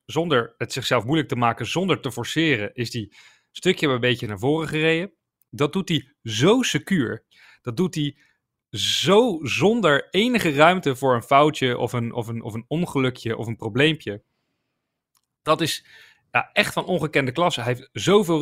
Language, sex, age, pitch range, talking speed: Dutch, male, 30-49, 120-160 Hz, 155 wpm